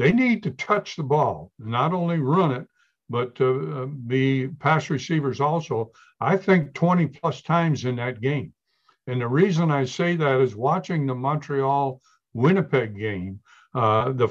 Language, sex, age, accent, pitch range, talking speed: English, male, 60-79, American, 125-165 Hz, 155 wpm